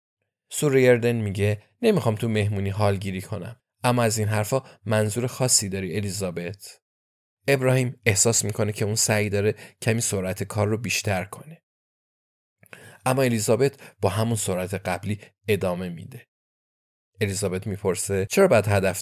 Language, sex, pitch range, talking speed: Persian, male, 100-130 Hz, 130 wpm